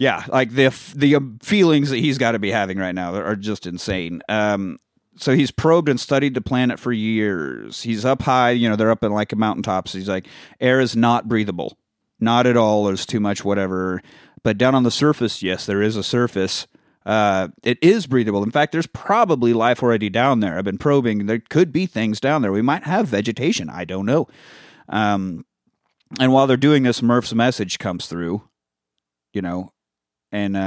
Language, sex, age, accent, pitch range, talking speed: English, male, 30-49, American, 95-120 Hz, 200 wpm